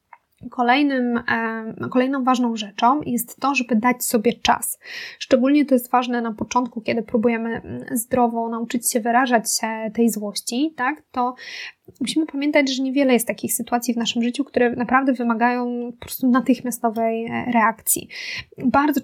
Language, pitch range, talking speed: Polish, 235-285 Hz, 140 wpm